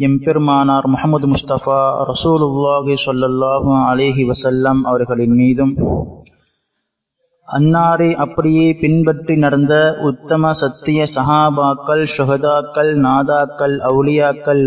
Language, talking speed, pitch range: Tamil, 80 wpm, 130-155 Hz